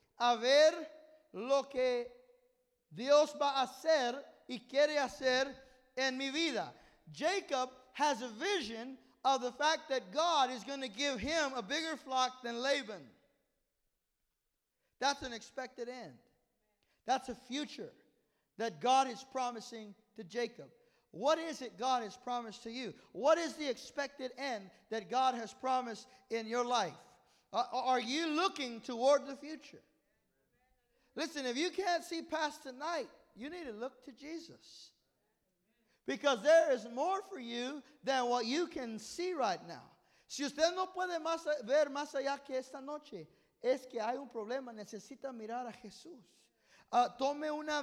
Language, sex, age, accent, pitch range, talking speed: English, male, 50-69, American, 245-300 Hz, 150 wpm